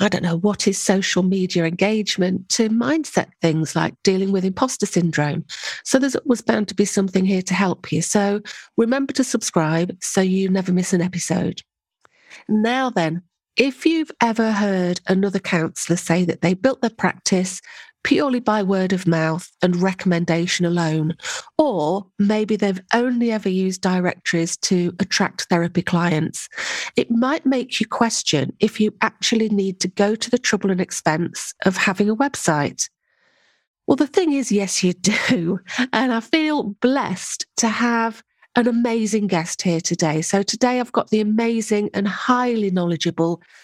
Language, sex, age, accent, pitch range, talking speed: English, female, 40-59, British, 180-230 Hz, 160 wpm